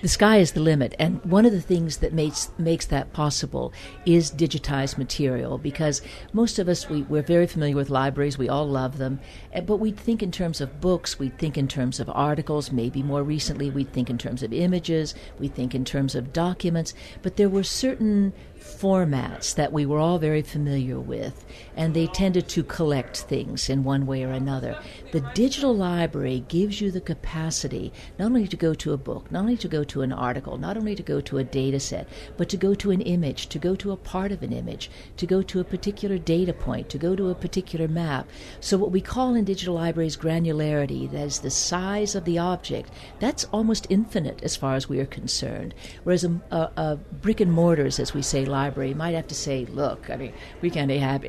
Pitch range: 140-185 Hz